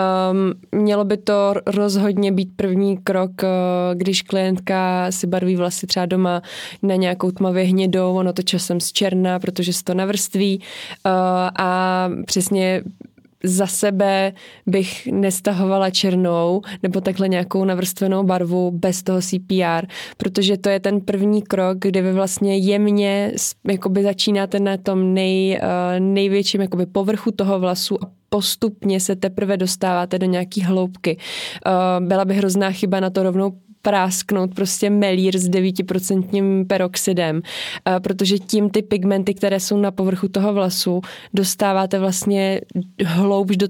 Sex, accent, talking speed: female, native, 135 wpm